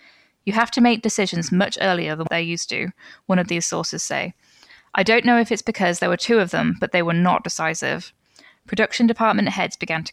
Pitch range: 175-210 Hz